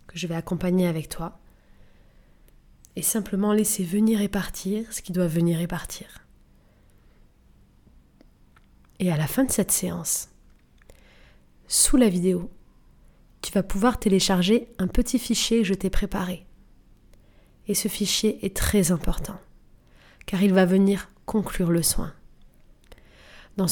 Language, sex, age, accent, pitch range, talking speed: French, female, 20-39, French, 175-205 Hz, 135 wpm